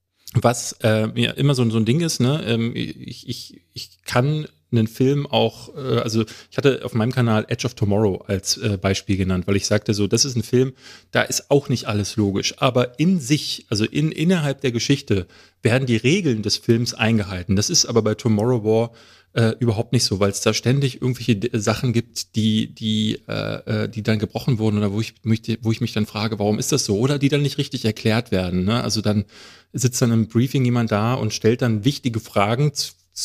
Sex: male